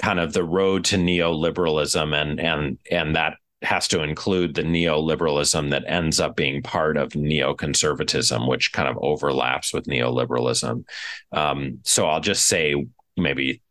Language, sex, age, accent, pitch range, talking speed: English, male, 30-49, American, 65-85 Hz, 150 wpm